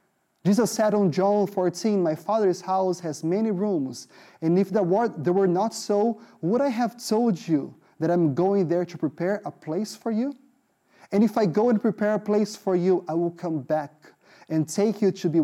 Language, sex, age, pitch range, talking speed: English, male, 30-49, 155-195 Hz, 200 wpm